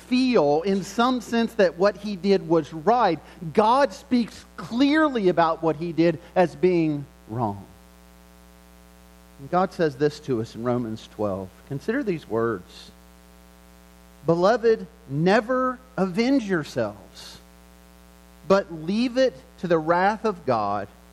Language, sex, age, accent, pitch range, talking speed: English, male, 40-59, American, 140-220 Hz, 120 wpm